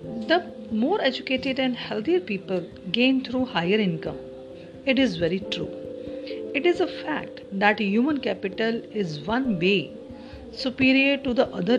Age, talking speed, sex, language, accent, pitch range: 50-69, 145 wpm, female, English, Indian, 190-265 Hz